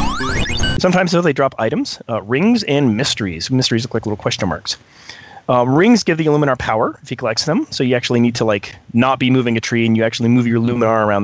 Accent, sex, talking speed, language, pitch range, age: American, male, 225 wpm, English, 115-140 Hz, 30-49